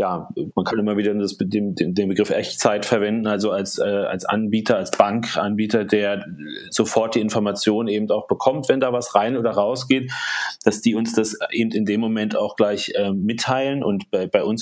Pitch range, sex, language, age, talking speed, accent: 105-125 Hz, male, German, 30-49, 185 wpm, German